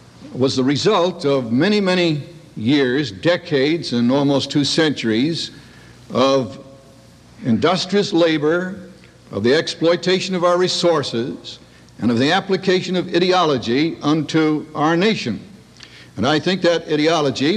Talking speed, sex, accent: 120 wpm, male, American